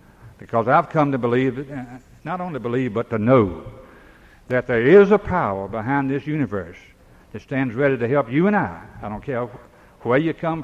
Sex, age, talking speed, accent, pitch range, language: male, 60-79, 185 wpm, American, 110-135 Hz, English